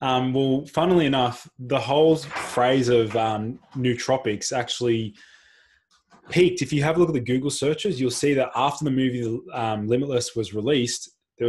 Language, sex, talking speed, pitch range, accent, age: English, male, 165 wpm, 115-130 Hz, Australian, 20-39